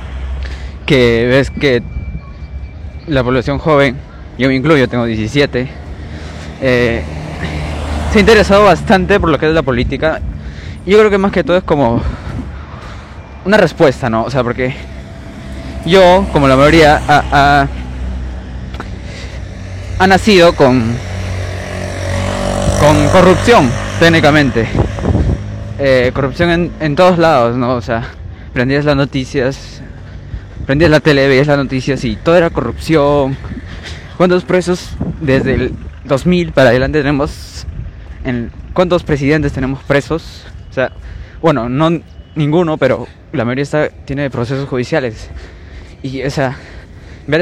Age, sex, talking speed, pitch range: 20-39, male, 130 wpm, 90-150 Hz